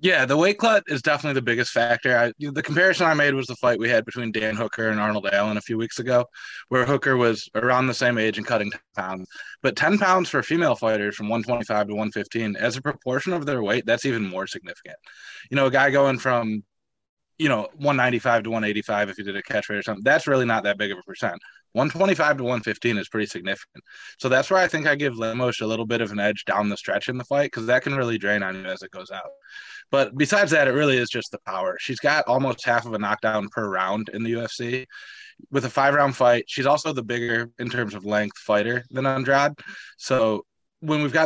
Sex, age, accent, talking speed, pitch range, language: male, 20-39, American, 240 wpm, 105-140 Hz, English